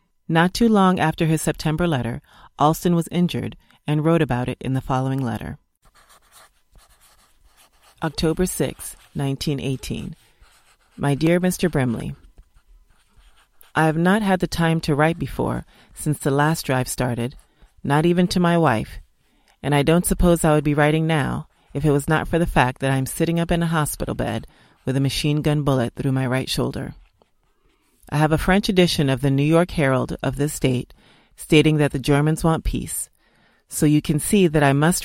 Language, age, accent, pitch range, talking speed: English, 30-49, American, 135-165 Hz, 175 wpm